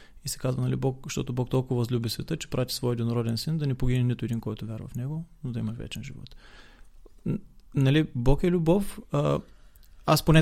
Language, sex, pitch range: Bulgarian, male, 130-185 Hz